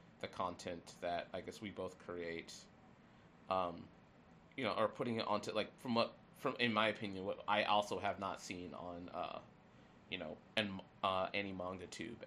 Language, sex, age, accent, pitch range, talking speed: English, male, 30-49, American, 90-110 Hz, 180 wpm